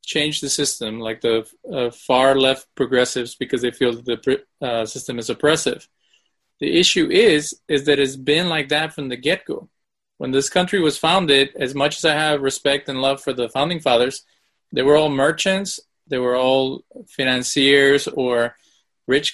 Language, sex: English, male